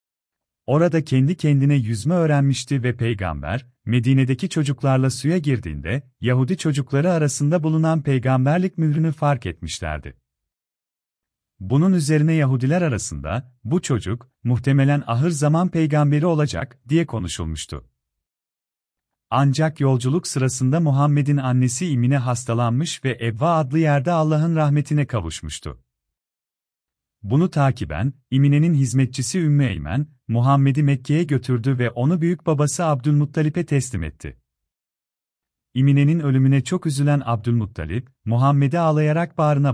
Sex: male